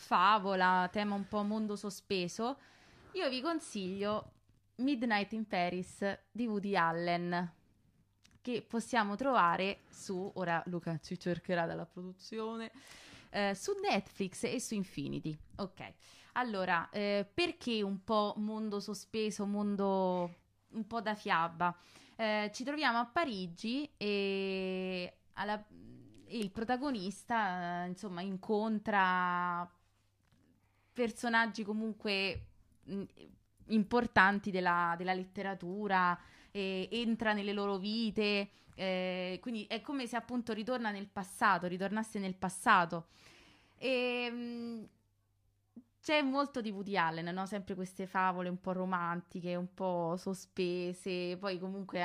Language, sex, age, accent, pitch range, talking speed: Italian, female, 20-39, native, 175-220 Hz, 115 wpm